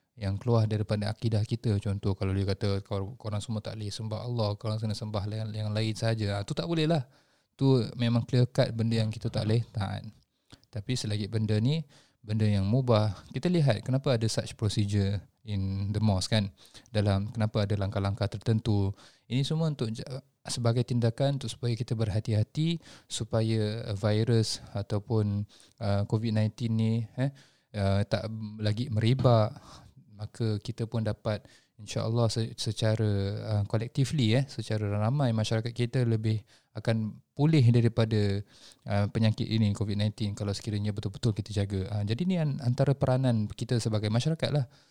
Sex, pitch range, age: male, 105-120 Hz, 20-39